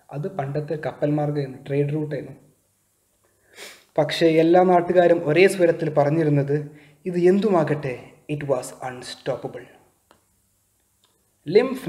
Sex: male